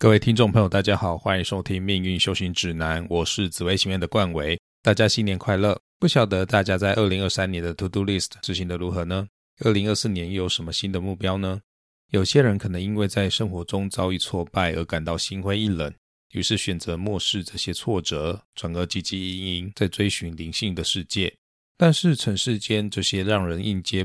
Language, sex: Chinese, male